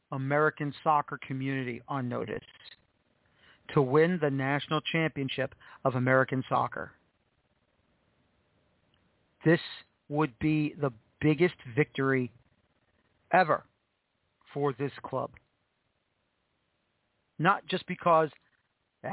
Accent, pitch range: American, 135-165 Hz